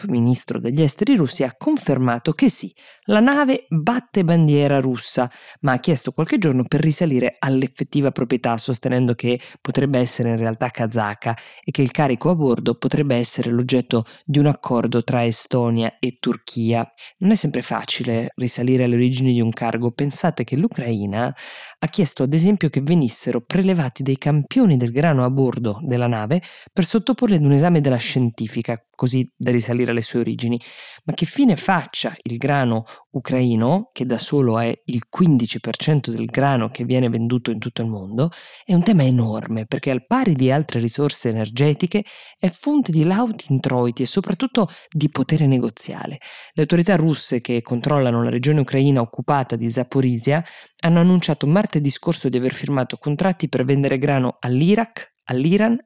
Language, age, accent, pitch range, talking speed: Italian, 20-39, native, 120-160 Hz, 165 wpm